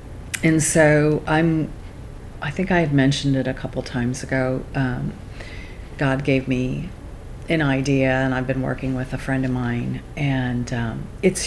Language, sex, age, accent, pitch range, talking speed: English, female, 50-69, American, 130-155 Hz, 160 wpm